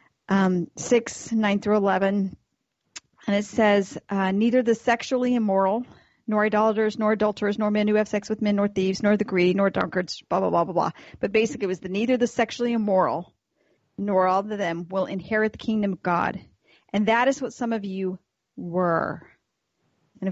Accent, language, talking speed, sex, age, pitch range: American, English, 190 wpm, female, 40-59, 185-220 Hz